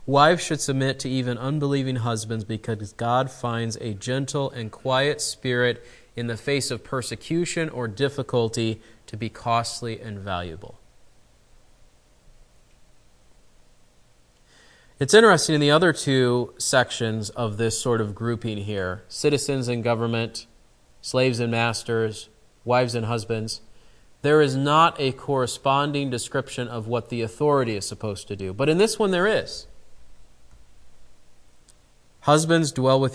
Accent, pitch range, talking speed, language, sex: American, 110-135 Hz, 130 wpm, English, male